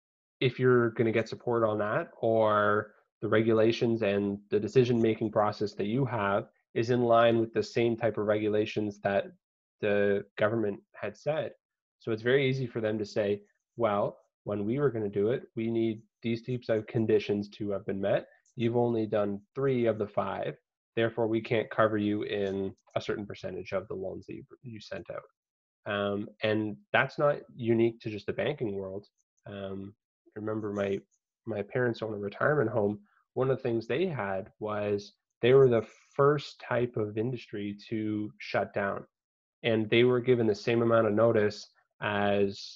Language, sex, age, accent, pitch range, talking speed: English, male, 20-39, American, 105-115 Hz, 175 wpm